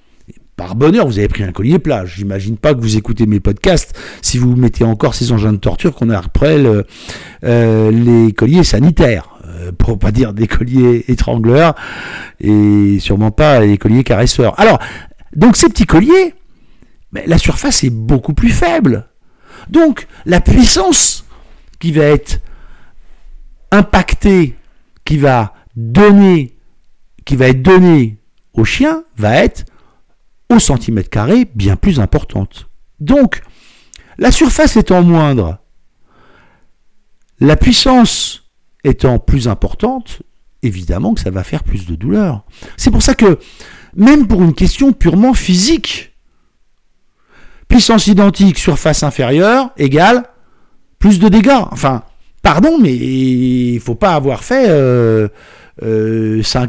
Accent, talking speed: French, 135 wpm